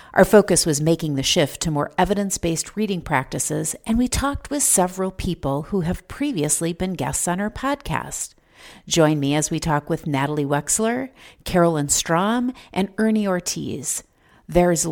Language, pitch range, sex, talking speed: English, 155-210 Hz, female, 155 wpm